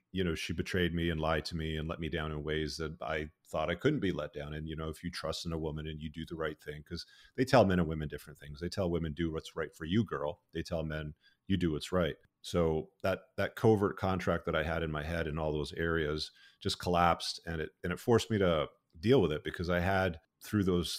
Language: English